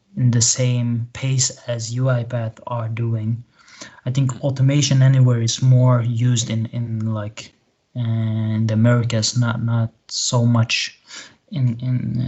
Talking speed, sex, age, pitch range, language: 130 wpm, male, 20-39, 115-125 Hz, English